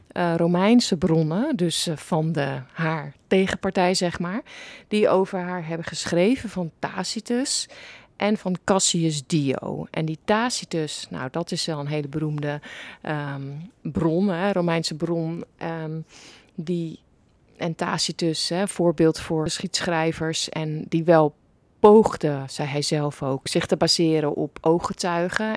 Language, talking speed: Dutch, 135 wpm